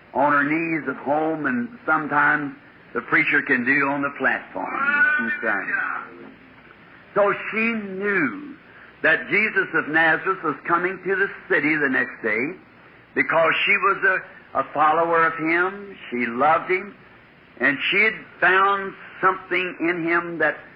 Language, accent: English, American